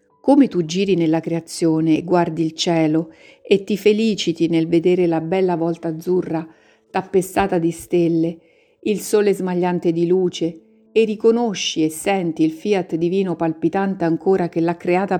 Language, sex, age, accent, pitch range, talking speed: Italian, female, 50-69, native, 165-205 Hz, 150 wpm